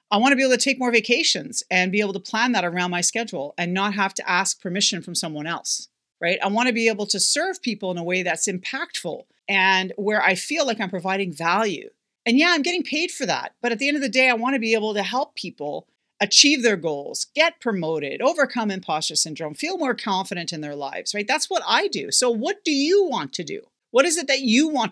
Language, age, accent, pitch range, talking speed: English, 40-59, American, 195-265 Hz, 250 wpm